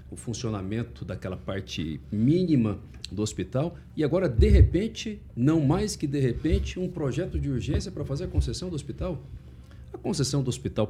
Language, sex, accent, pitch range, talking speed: Portuguese, male, Brazilian, 110-160 Hz, 165 wpm